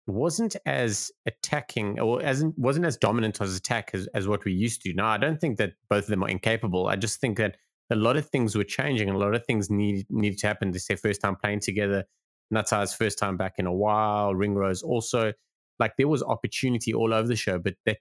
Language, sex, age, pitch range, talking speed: English, male, 30-49, 100-125 Hz, 240 wpm